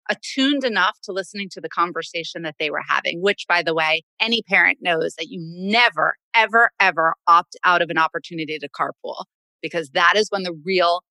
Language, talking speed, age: English, 195 wpm, 30-49